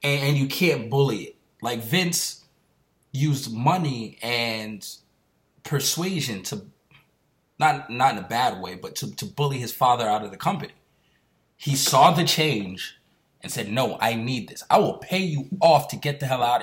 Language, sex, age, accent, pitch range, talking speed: English, male, 20-39, American, 135-170 Hz, 175 wpm